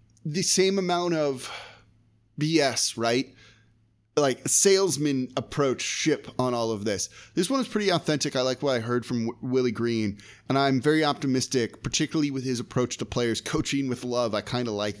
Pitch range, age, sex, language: 115-155 Hz, 20-39, male, English